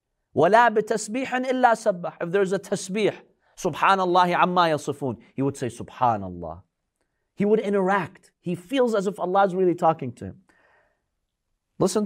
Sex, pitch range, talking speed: male, 130-200 Hz, 145 wpm